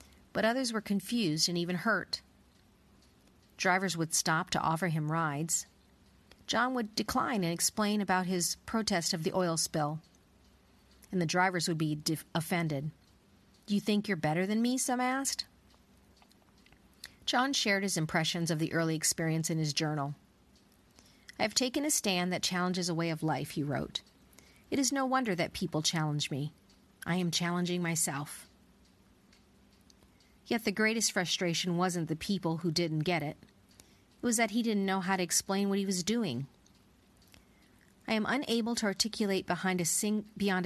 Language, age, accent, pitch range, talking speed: English, 40-59, American, 165-210 Hz, 160 wpm